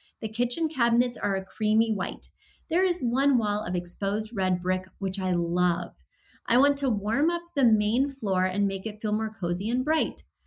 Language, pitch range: English, 190-275 Hz